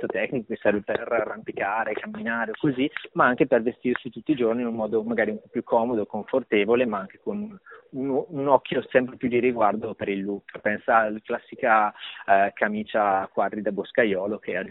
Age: 20-39